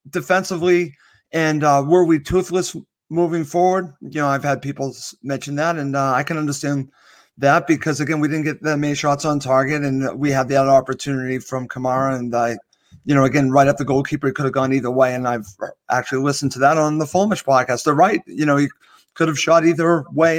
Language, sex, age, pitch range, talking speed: English, male, 40-59, 140-165 Hz, 215 wpm